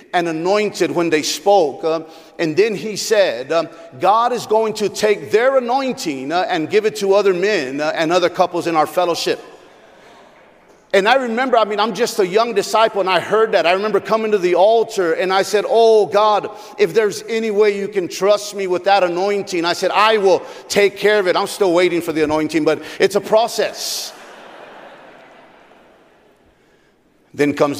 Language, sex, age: English, male, 50-69